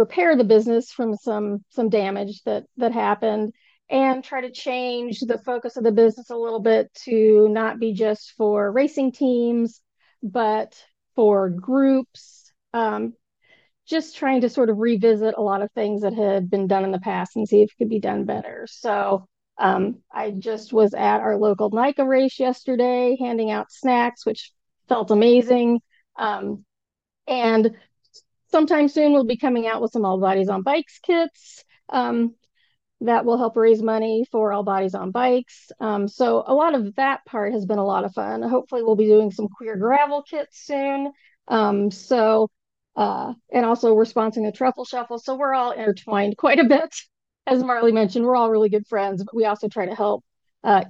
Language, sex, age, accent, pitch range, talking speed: English, female, 40-59, American, 210-255 Hz, 185 wpm